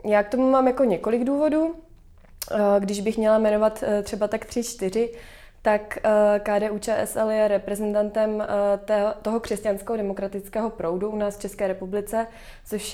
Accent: native